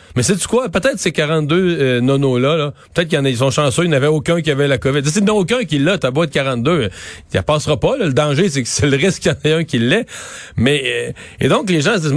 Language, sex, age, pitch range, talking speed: French, male, 40-59, 120-160 Hz, 285 wpm